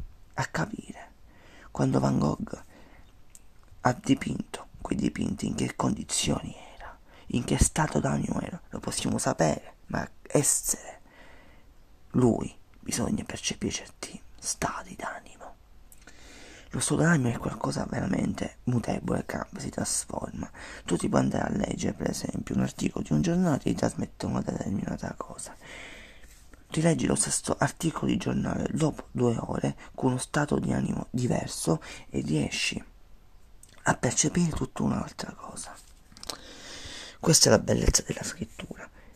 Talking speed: 135 wpm